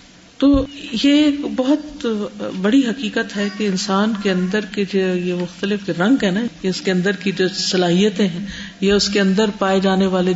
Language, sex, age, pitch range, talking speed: Urdu, female, 50-69, 190-245 Hz, 180 wpm